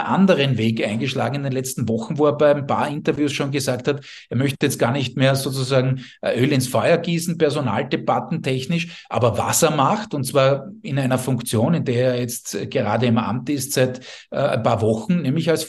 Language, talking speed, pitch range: German, 205 wpm, 120-155 Hz